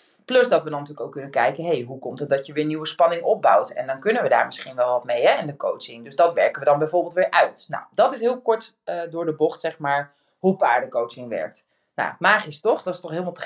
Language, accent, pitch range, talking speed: Dutch, Dutch, 150-200 Hz, 275 wpm